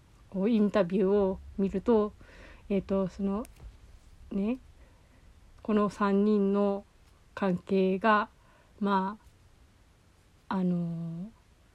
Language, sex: Japanese, female